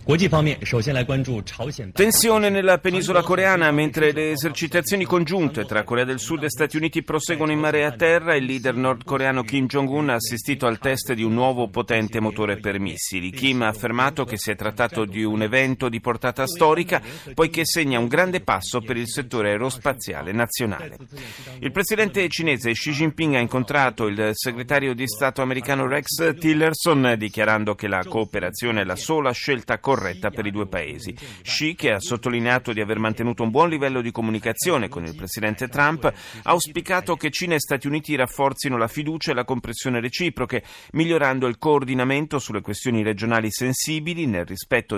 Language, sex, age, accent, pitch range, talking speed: Italian, male, 40-59, native, 110-150 Hz, 165 wpm